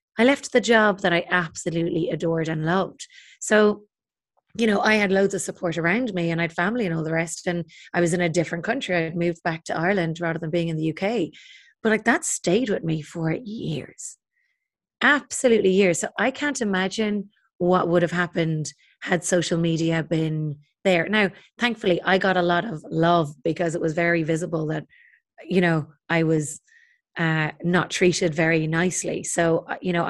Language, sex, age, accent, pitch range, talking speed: English, female, 30-49, Irish, 170-220 Hz, 190 wpm